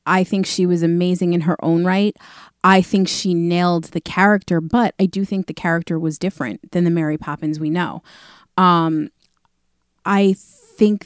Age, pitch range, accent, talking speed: 30-49, 165-185 Hz, American, 175 wpm